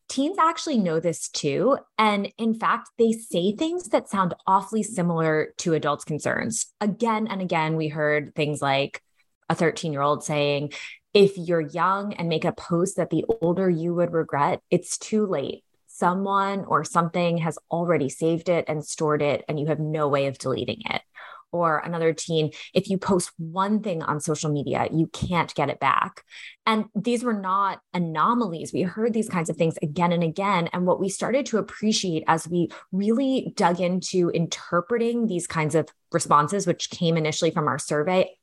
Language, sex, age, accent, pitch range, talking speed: English, female, 20-39, American, 160-200 Hz, 180 wpm